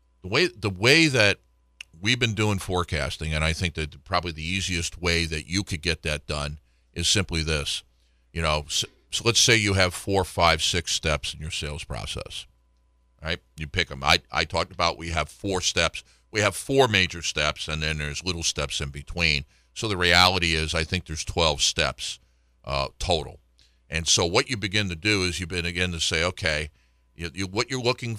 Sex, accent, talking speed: male, American, 200 wpm